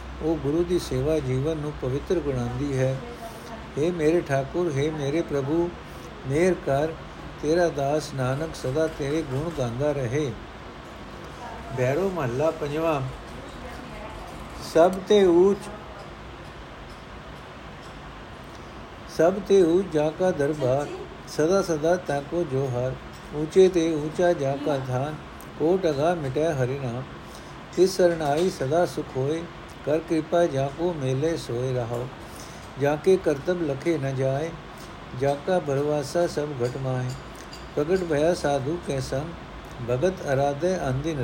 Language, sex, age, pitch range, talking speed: Punjabi, male, 60-79, 135-170 Hz, 110 wpm